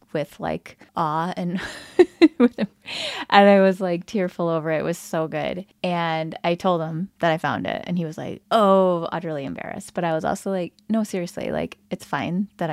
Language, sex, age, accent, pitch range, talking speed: English, female, 20-39, American, 160-200 Hz, 195 wpm